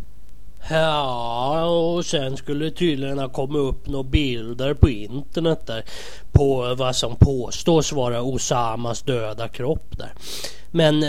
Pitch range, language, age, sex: 135-205 Hz, Swedish, 30-49, male